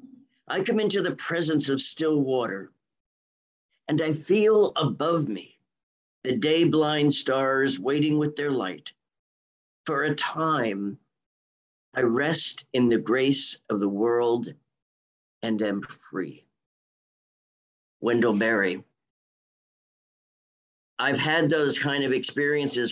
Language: English